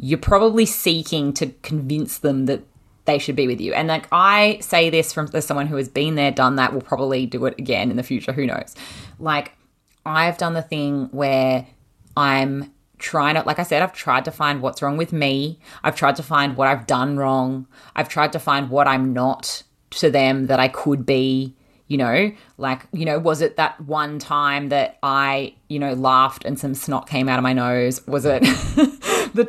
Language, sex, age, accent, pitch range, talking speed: English, female, 20-39, Australian, 135-165 Hz, 210 wpm